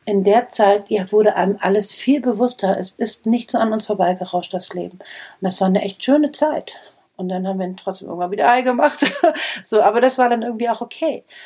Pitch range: 185-225 Hz